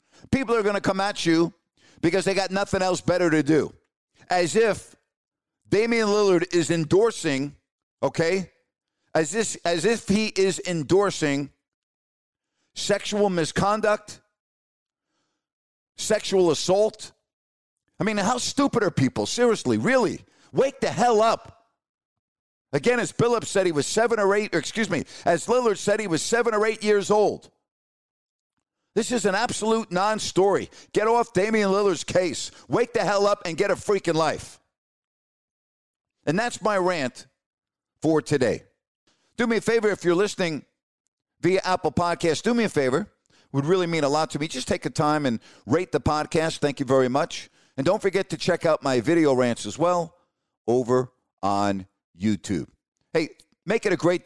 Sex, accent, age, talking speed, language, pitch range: male, American, 50-69, 160 wpm, English, 155-210 Hz